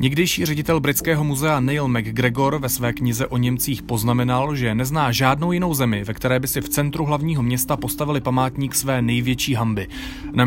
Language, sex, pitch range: Czech, male, 110-135 Hz